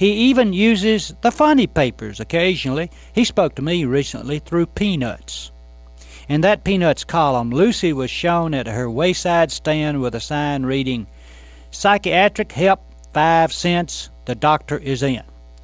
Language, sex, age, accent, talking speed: English, male, 60-79, American, 140 wpm